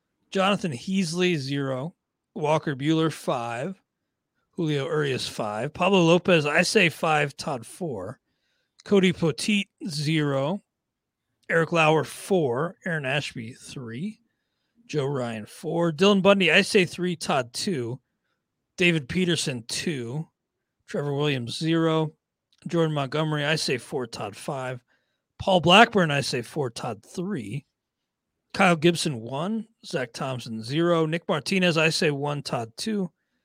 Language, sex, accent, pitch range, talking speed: English, male, American, 135-185 Hz, 120 wpm